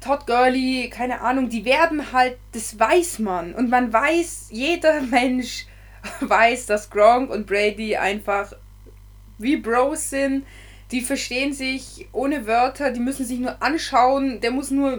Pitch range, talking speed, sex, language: 190-260 Hz, 150 wpm, female, German